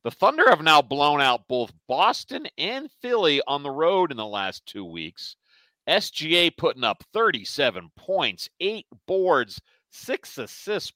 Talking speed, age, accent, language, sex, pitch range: 150 wpm, 50-69, American, English, male, 110-165 Hz